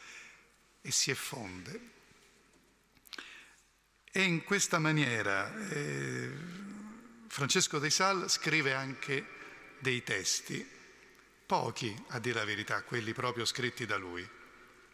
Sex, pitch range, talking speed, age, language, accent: male, 120-150 Hz, 100 wpm, 50-69, Italian, native